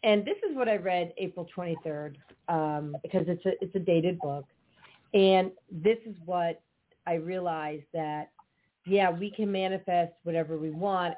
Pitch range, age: 165-215 Hz, 40-59